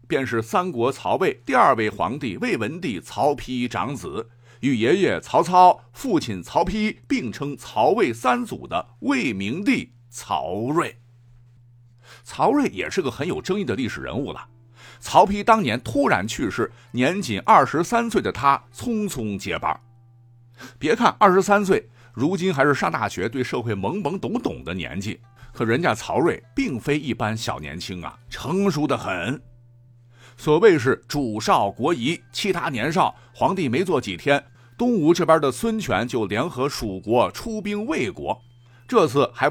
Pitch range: 120-185 Hz